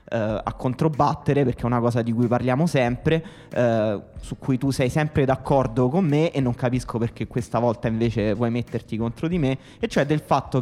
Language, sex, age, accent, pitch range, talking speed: Italian, male, 20-39, native, 120-155 Hz, 190 wpm